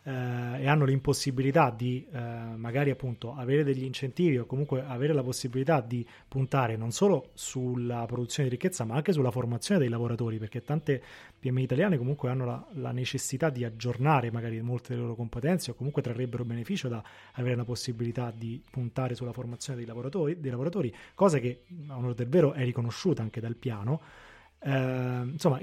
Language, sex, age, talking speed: Italian, male, 30-49, 175 wpm